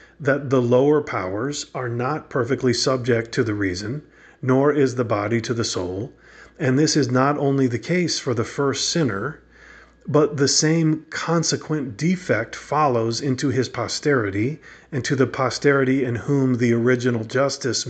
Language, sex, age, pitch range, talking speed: English, male, 40-59, 115-140 Hz, 160 wpm